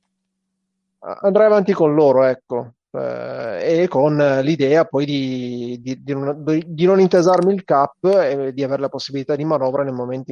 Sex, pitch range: male, 135-160 Hz